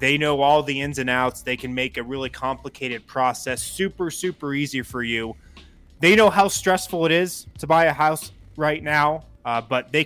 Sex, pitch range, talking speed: male, 115-155 Hz, 205 wpm